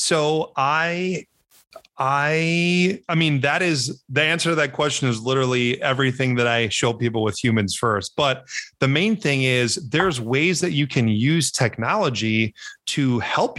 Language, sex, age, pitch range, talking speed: English, male, 30-49, 120-155 Hz, 160 wpm